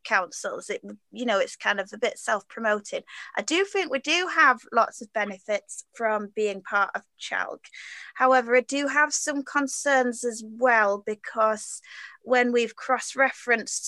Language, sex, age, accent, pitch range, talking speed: English, female, 20-39, British, 215-255 Hz, 155 wpm